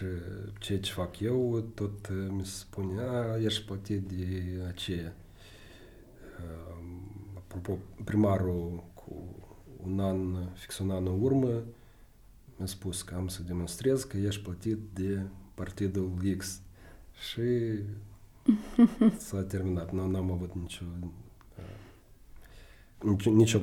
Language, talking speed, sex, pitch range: Romanian, 110 wpm, male, 90-105 Hz